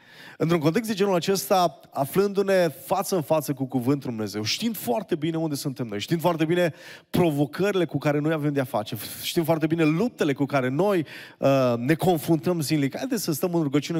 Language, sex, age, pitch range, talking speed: Romanian, male, 30-49, 140-180 Hz, 185 wpm